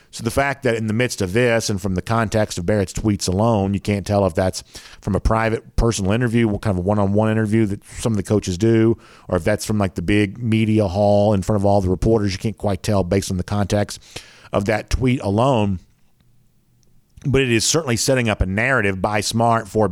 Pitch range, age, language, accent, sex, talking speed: 100-120 Hz, 50-69, English, American, male, 230 wpm